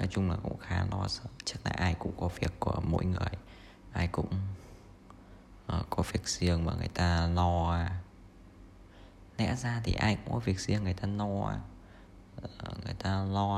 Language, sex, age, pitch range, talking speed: Vietnamese, male, 20-39, 90-105 Hz, 190 wpm